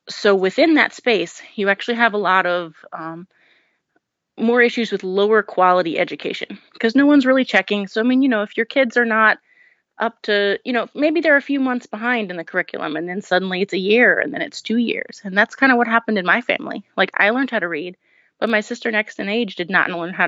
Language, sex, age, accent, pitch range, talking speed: English, female, 30-49, American, 190-250 Hz, 240 wpm